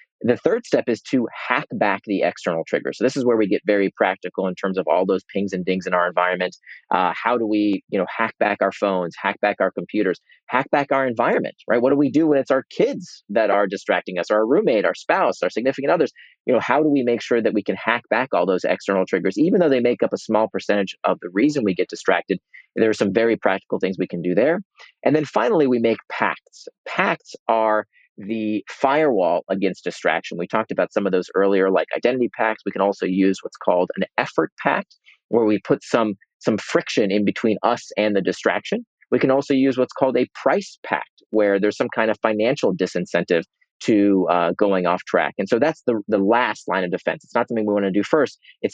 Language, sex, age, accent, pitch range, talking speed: English, male, 30-49, American, 95-120 Hz, 235 wpm